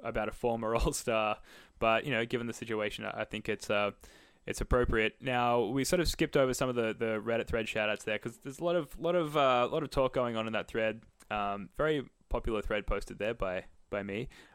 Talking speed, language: 230 wpm, English